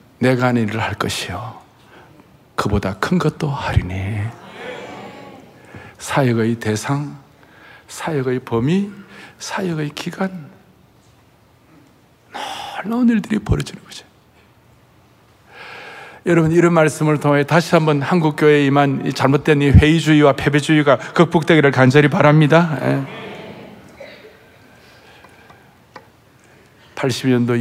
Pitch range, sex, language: 115-165 Hz, male, Korean